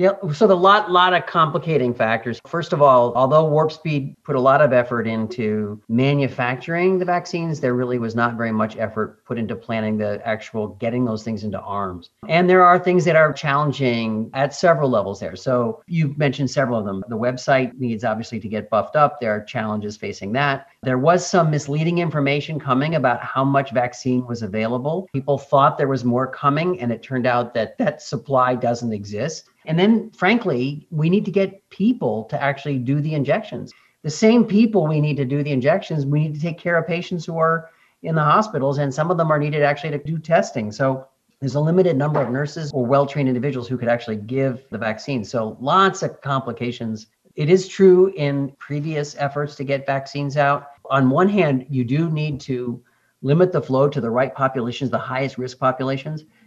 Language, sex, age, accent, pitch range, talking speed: English, male, 40-59, American, 125-160 Hz, 200 wpm